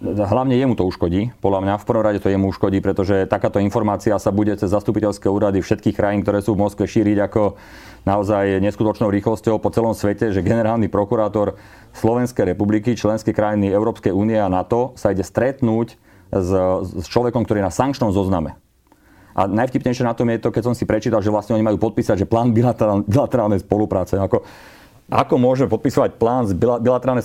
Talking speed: 175 wpm